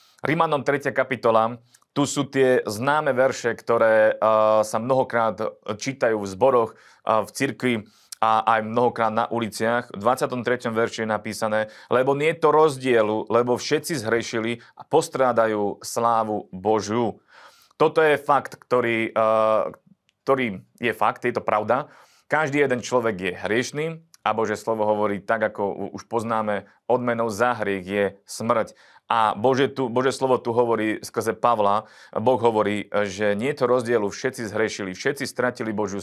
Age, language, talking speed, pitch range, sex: 30-49, Slovak, 150 wpm, 110-125 Hz, male